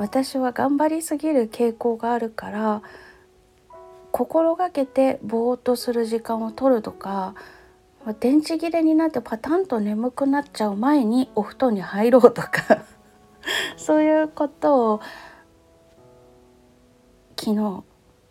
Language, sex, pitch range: Japanese, female, 210-300 Hz